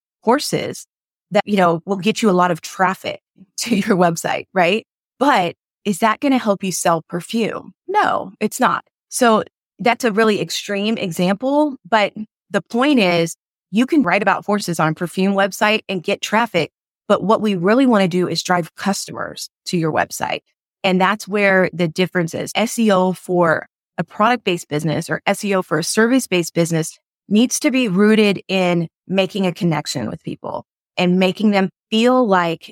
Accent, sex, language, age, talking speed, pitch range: American, female, English, 30-49, 175 wpm, 175-210 Hz